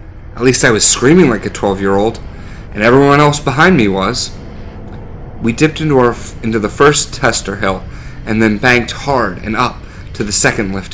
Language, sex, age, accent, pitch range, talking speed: English, male, 30-49, American, 100-125 Hz, 185 wpm